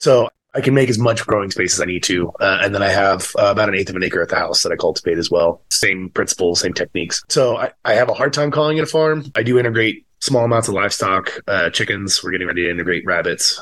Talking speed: 275 wpm